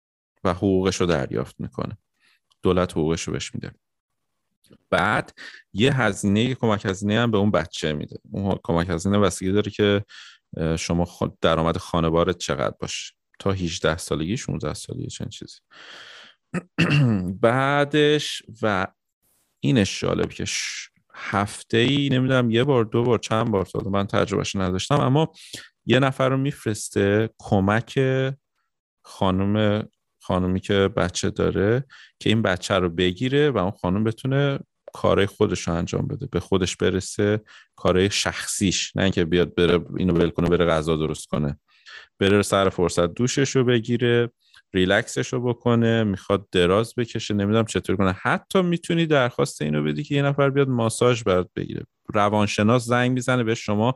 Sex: male